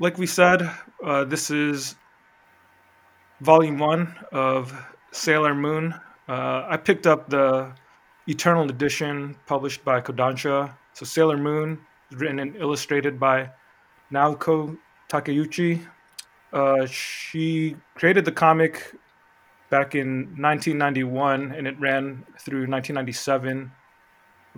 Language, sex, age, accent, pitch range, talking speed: English, male, 20-39, American, 135-155 Hz, 105 wpm